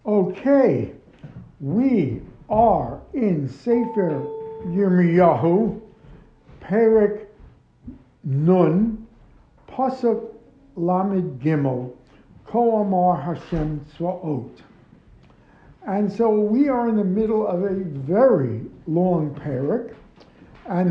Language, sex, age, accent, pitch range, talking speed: English, male, 60-79, American, 165-225 Hz, 75 wpm